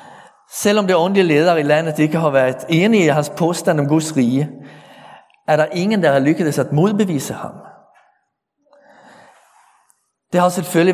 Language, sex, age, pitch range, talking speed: Danish, male, 50-69, 145-185 Hz, 155 wpm